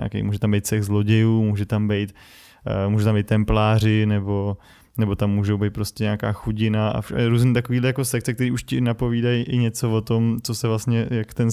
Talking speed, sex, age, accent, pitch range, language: 210 wpm, male, 20-39, native, 105-115 Hz, Czech